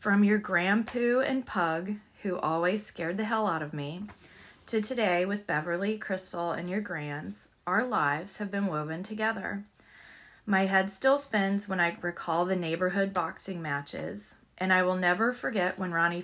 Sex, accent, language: female, American, English